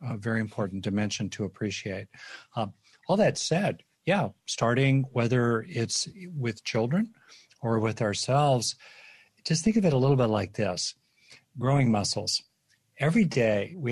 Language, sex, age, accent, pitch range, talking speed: English, male, 50-69, American, 115-150 Hz, 140 wpm